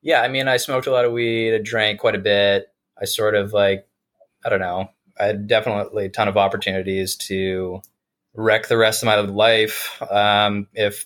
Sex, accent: male, American